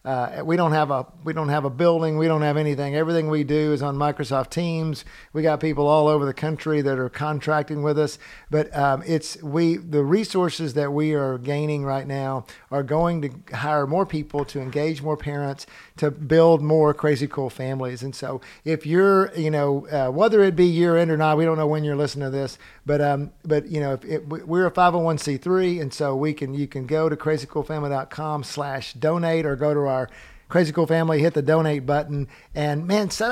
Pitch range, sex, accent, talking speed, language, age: 145-160 Hz, male, American, 215 wpm, English, 50-69